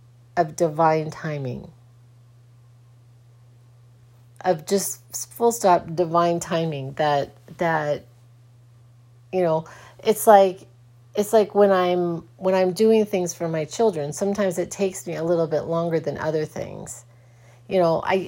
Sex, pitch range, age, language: female, 130-175 Hz, 30-49, English